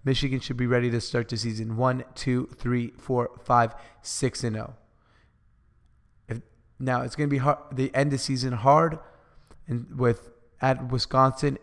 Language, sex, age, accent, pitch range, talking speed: English, male, 30-49, American, 115-135 Hz, 165 wpm